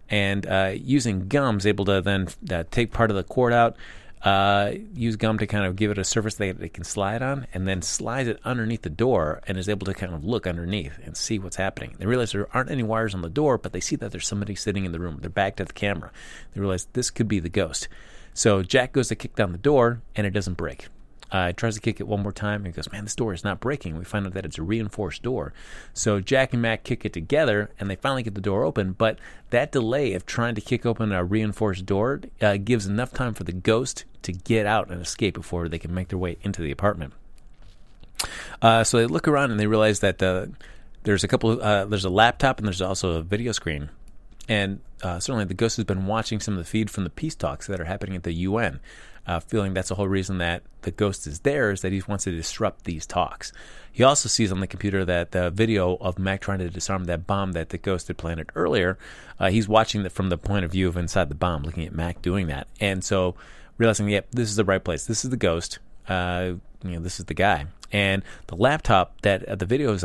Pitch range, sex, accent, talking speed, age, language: 90-110 Hz, male, American, 250 wpm, 30-49, English